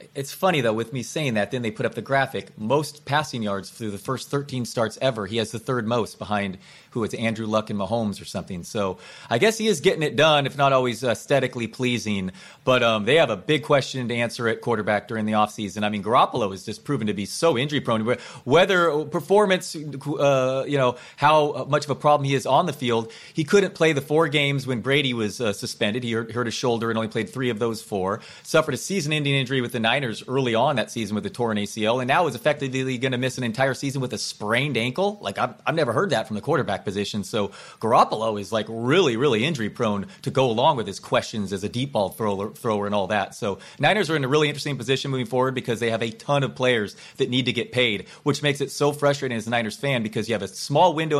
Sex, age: male, 30-49